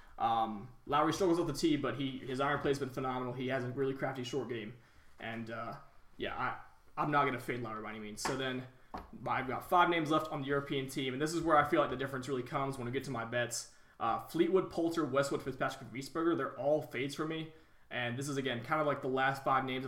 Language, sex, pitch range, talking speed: English, male, 120-140 Hz, 255 wpm